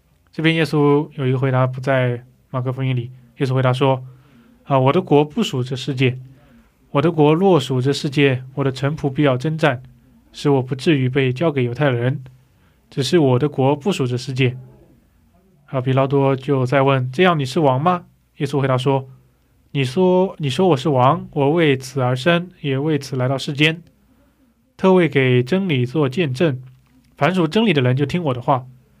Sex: male